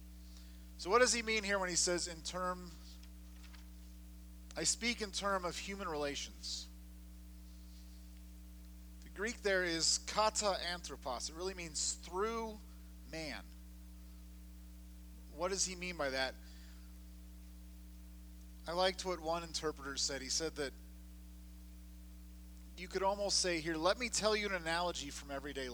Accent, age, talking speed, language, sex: American, 40-59, 135 wpm, English, male